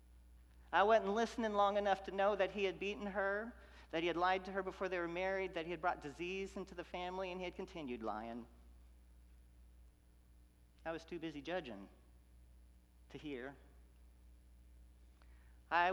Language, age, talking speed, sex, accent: English, 50-69, 160 wpm, male, American